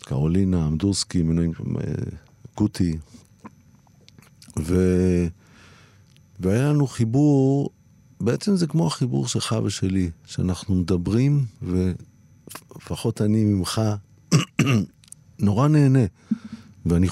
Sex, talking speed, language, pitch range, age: male, 75 wpm, Hebrew, 95-130 Hz, 50-69